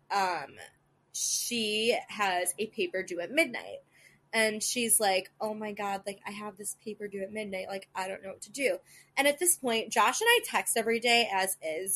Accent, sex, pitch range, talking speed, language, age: American, female, 190-235 Hz, 205 wpm, English, 20-39